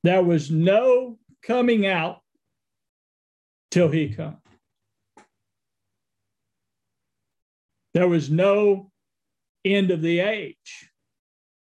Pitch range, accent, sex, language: 150-195 Hz, American, male, English